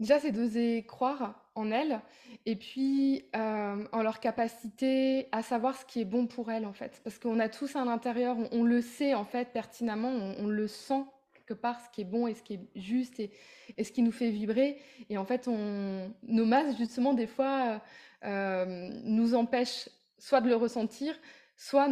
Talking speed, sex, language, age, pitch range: 205 wpm, female, French, 20-39, 215-250 Hz